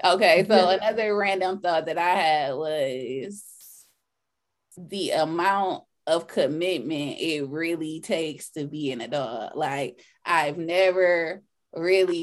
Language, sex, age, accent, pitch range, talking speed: English, female, 20-39, American, 170-285 Hz, 120 wpm